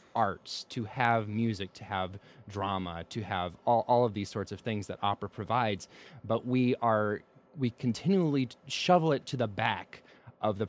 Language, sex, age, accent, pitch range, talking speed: English, male, 20-39, American, 100-130 Hz, 175 wpm